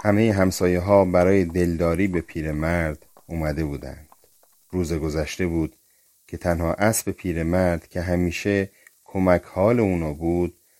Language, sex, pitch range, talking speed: Persian, male, 80-95 Hz, 135 wpm